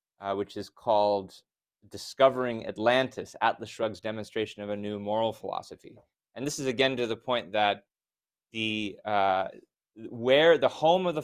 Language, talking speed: English, 155 wpm